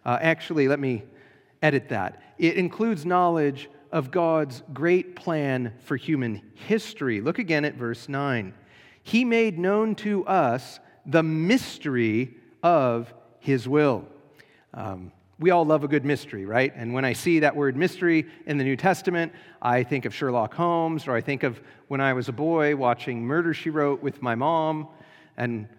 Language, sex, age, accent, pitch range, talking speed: English, male, 40-59, American, 130-175 Hz, 170 wpm